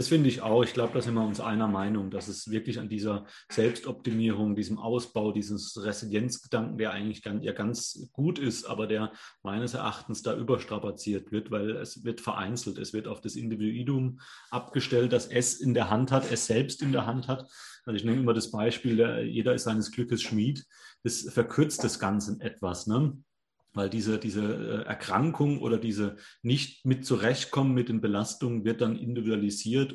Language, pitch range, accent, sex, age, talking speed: German, 105-125 Hz, German, male, 30-49, 180 wpm